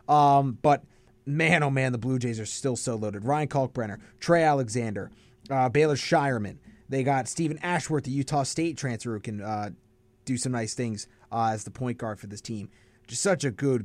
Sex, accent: male, American